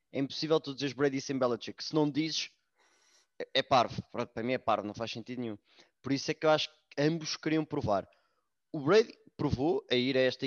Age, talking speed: 20-39, 220 wpm